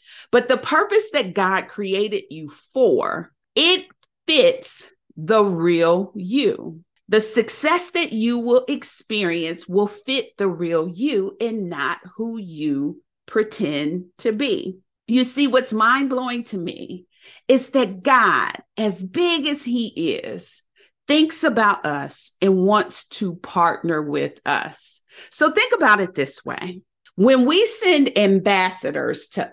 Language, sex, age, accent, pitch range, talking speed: English, female, 40-59, American, 180-270 Hz, 135 wpm